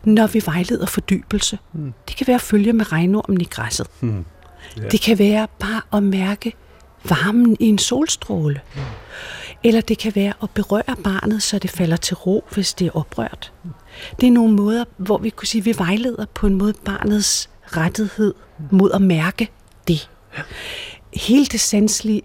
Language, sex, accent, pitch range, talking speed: Danish, female, native, 180-220 Hz, 165 wpm